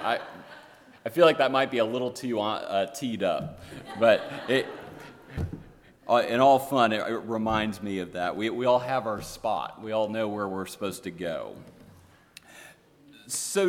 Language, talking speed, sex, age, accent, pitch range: English, 170 wpm, male, 40-59, American, 110-145 Hz